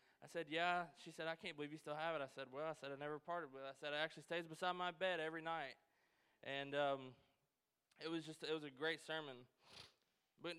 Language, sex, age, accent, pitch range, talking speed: English, male, 20-39, American, 140-180 Hz, 245 wpm